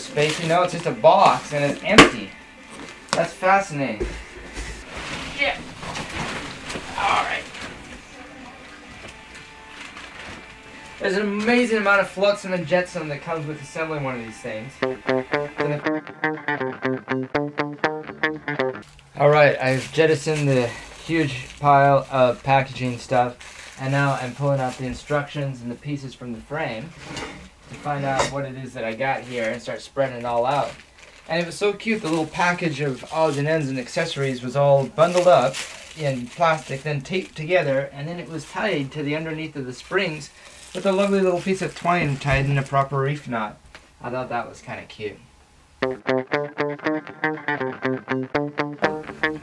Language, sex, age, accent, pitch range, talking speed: English, male, 20-39, American, 130-160 Hz, 150 wpm